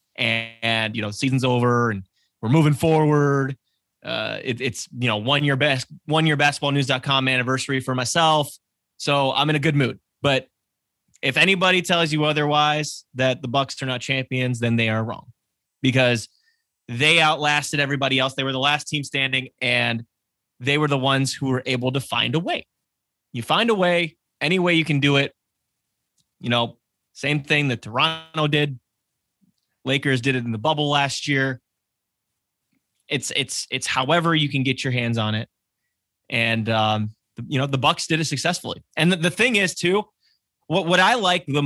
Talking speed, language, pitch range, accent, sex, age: 180 wpm, English, 120-150 Hz, American, male, 20-39